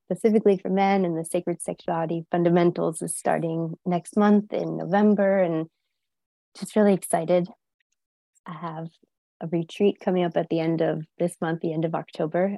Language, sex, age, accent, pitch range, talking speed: English, female, 20-39, American, 165-185 Hz, 160 wpm